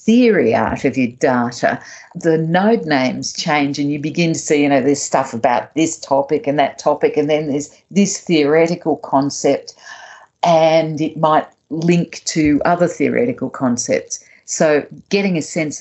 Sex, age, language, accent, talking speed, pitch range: female, 50-69, English, Australian, 160 wpm, 145-180 Hz